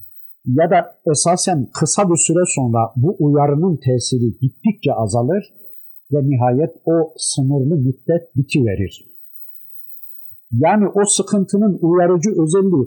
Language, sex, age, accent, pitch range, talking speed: Turkish, male, 50-69, native, 125-175 Hz, 110 wpm